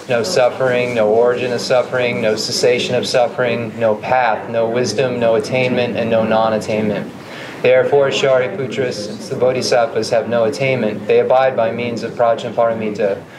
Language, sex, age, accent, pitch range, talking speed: English, male, 30-49, American, 115-130 Hz, 150 wpm